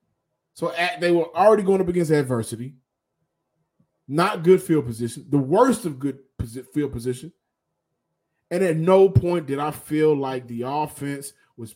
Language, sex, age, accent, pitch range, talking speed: English, male, 20-39, American, 130-185 Hz, 155 wpm